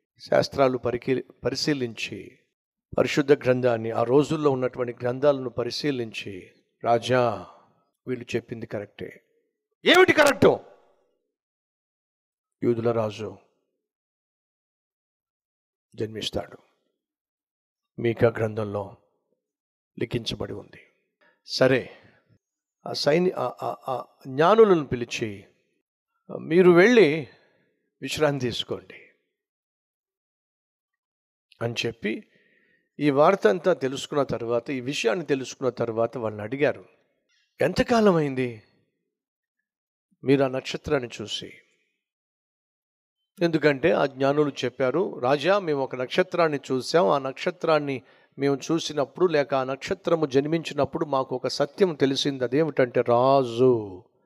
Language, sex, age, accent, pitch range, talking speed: Telugu, male, 50-69, native, 120-170 Hz, 80 wpm